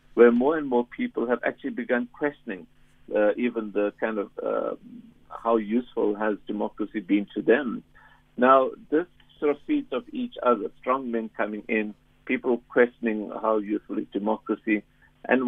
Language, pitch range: English, 110-130 Hz